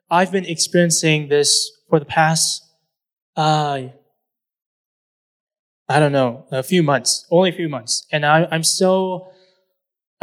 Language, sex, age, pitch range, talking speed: English, male, 20-39, 140-165 Hz, 130 wpm